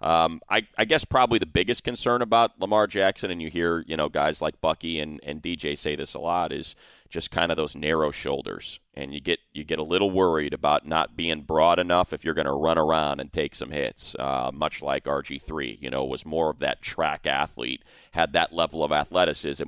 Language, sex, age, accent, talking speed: English, male, 30-49, American, 225 wpm